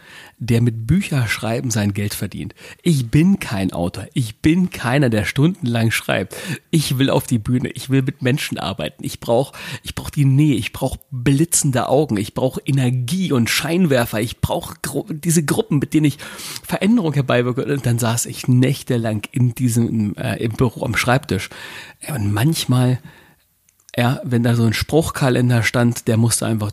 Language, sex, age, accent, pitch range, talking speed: German, male, 40-59, German, 115-160 Hz, 165 wpm